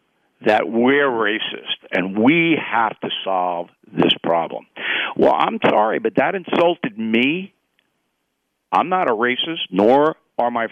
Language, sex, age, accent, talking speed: English, male, 60-79, American, 135 wpm